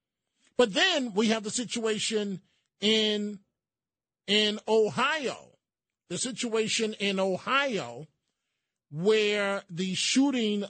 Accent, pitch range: American, 165-220 Hz